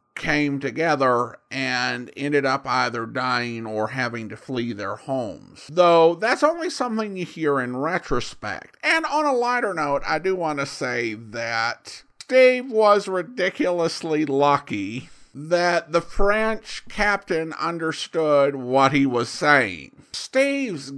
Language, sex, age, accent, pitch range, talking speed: English, male, 50-69, American, 135-190 Hz, 130 wpm